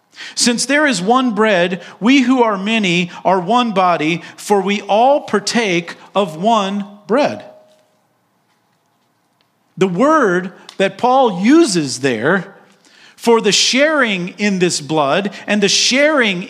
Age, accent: 40-59, American